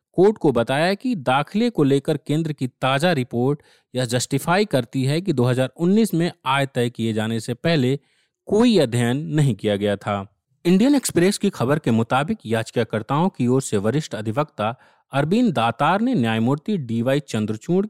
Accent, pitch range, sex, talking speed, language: native, 125-175 Hz, male, 160 wpm, Hindi